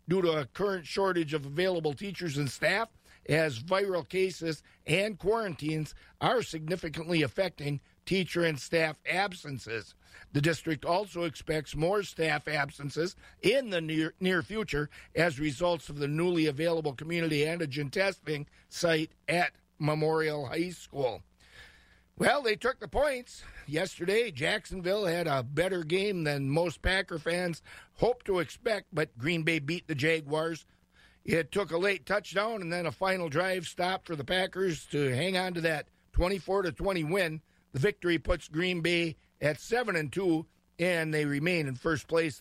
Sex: male